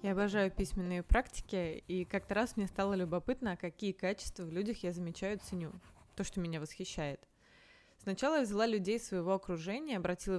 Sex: female